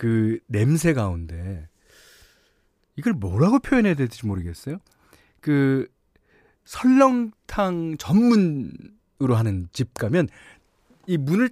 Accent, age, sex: native, 40-59, male